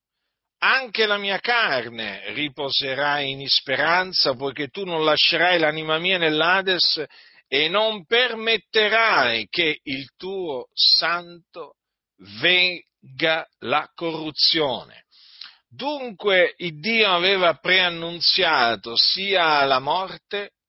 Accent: native